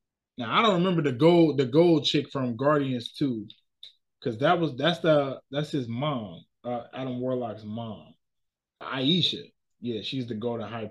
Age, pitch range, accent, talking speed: 20-39, 130-165 Hz, American, 165 wpm